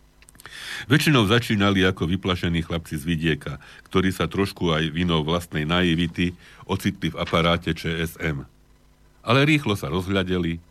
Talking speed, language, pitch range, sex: 125 wpm, Slovak, 80-100 Hz, male